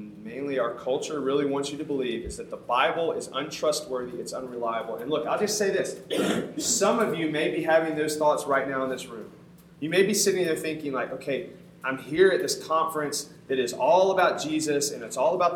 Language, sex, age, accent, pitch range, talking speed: English, male, 30-49, American, 130-175 Hz, 220 wpm